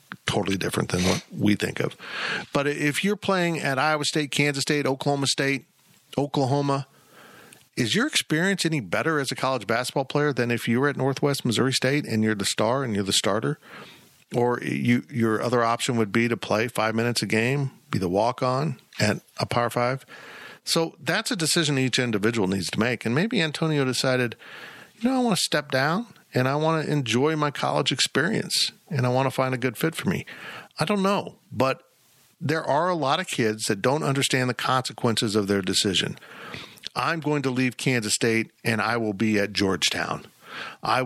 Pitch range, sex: 120-155 Hz, male